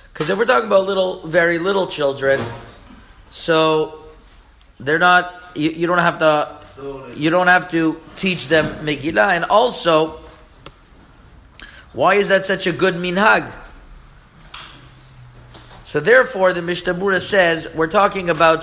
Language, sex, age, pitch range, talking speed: English, male, 40-59, 150-185 Hz, 130 wpm